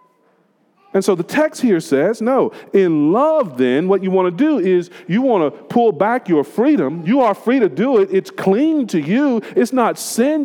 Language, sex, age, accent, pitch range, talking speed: English, male, 40-59, American, 175-255 Hz, 205 wpm